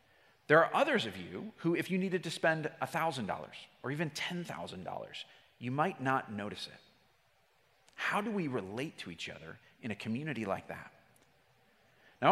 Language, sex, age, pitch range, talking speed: English, male, 40-59, 140-195 Hz, 160 wpm